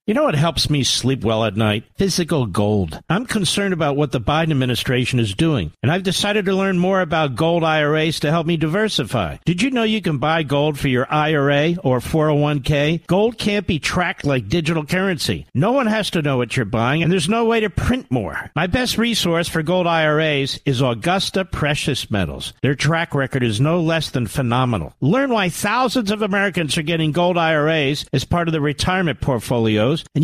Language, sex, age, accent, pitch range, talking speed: English, male, 50-69, American, 135-190 Hz, 200 wpm